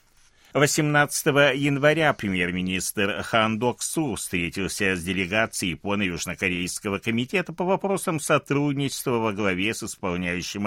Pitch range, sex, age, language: 95-155 Hz, male, 60-79, Russian